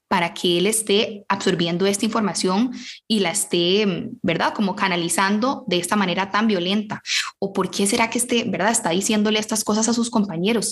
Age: 10-29